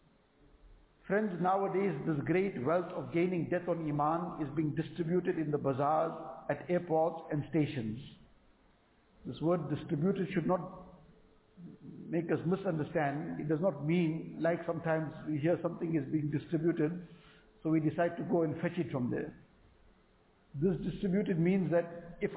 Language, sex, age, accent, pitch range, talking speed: English, male, 60-79, Indian, 155-190 Hz, 150 wpm